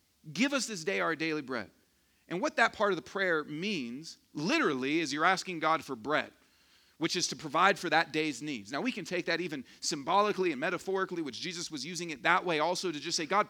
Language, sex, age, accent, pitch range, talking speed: English, male, 40-59, American, 135-220 Hz, 225 wpm